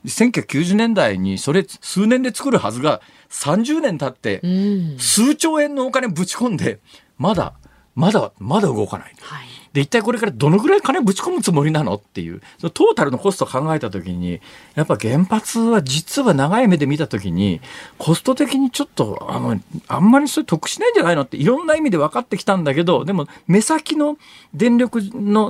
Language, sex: Japanese, male